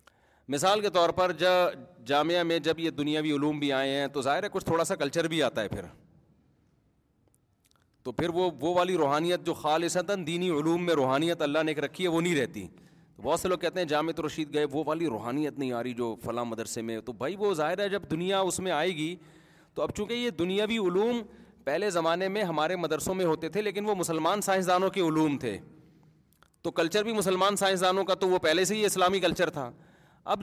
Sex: male